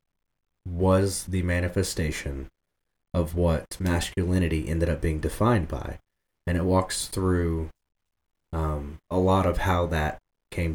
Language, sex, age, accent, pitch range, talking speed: English, male, 30-49, American, 80-95 Hz, 125 wpm